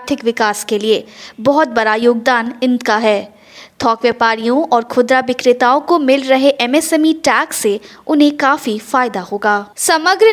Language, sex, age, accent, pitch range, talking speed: Hindi, female, 20-39, native, 240-315 Hz, 140 wpm